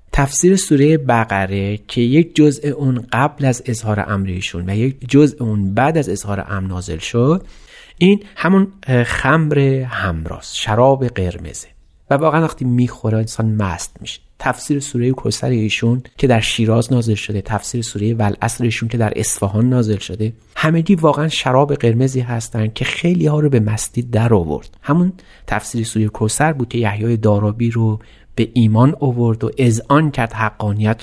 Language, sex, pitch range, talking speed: Persian, male, 105-135 Hz, 160 wpm